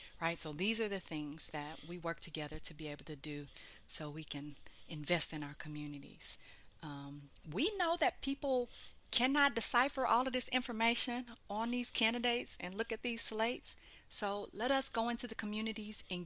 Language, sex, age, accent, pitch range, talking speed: English, female, 40-59, American, 165-230 Hz, 180 wpm